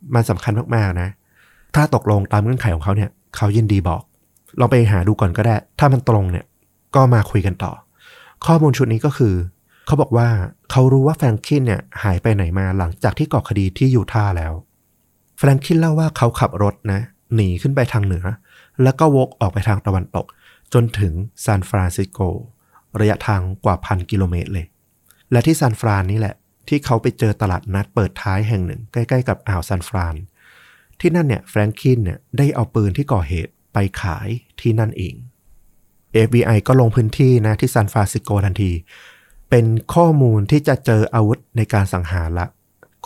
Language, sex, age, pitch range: Thai, male, 30-49, 95-125 Hz